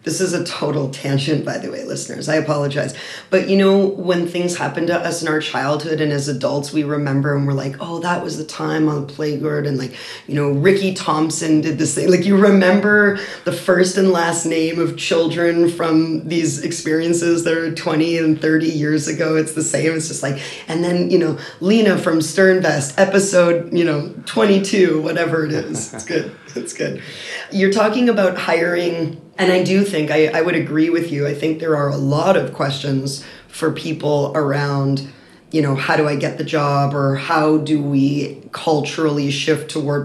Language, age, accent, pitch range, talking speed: English, 30-49, American, 145-170 Hz, 195 wpm